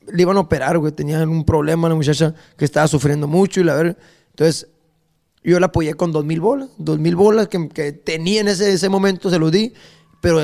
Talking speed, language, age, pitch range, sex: 225 wpm, Spanish, 20-39, 160-195 Hz, male